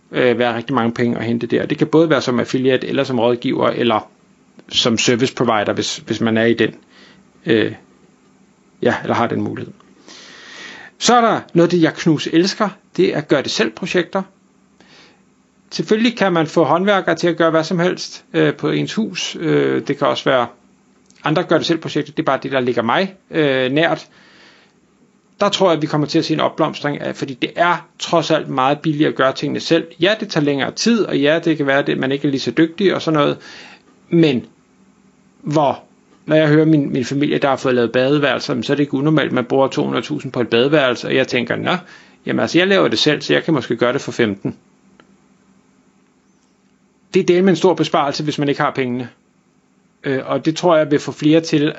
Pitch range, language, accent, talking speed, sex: 135-170 Hz, Danish, native, 215 wpm, male